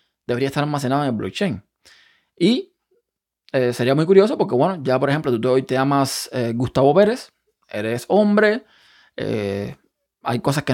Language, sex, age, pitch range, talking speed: Spanish, male, 20-39, 125-160 Hz, 160 wpm